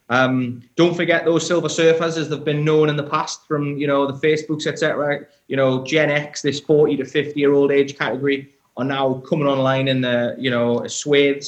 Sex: male